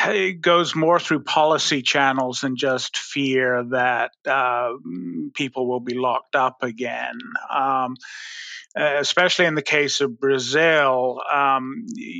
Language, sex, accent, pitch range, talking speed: English, male, American, 125-145 Hz, 125 wpm